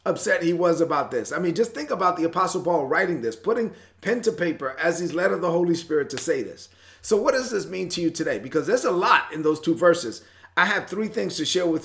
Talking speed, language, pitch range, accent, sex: 265 wpm, English, 125-185 Hz, American, male